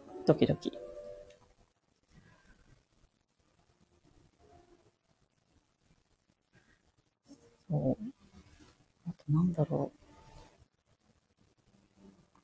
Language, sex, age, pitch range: Japanese, female, 40-59, 125-180 Hz